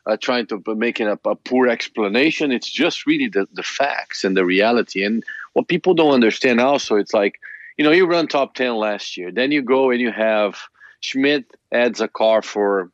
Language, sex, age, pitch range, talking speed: English, male, 40-59, 105-130 Hz, 210 wpm